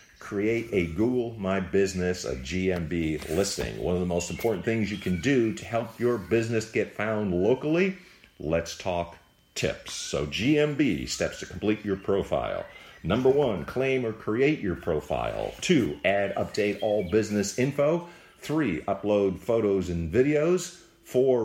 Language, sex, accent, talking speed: English, male, American, 150 wpm